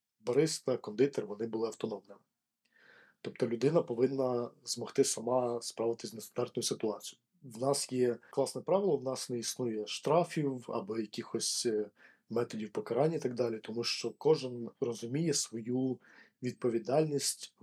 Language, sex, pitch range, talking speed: Ukrainian, male, 120-135 Hz, 125 wpm